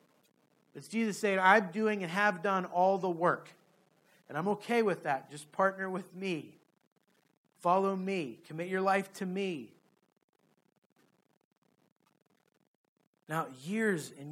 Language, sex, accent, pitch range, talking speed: English, male, American, 130-170 Hz, 125 wpm